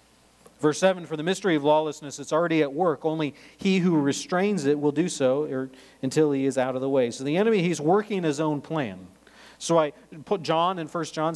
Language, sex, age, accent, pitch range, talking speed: English, male, 40-59, American, 110-170 Hz, 215 wpm